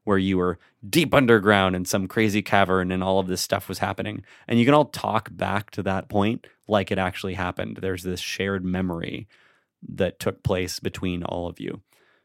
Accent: American